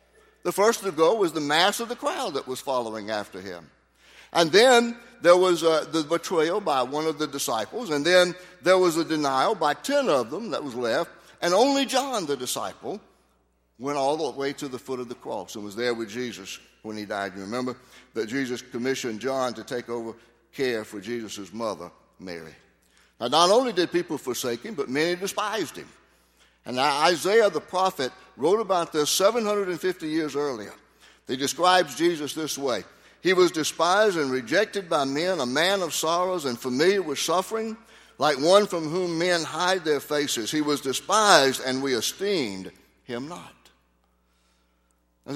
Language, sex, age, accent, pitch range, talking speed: English, male, 60-79, American, 125-180 Hz, 180 wpm